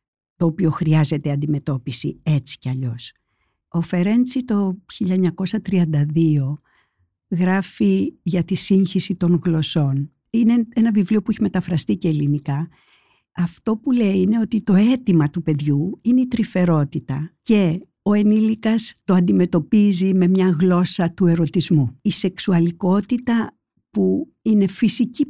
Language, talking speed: Greek, 125 wpm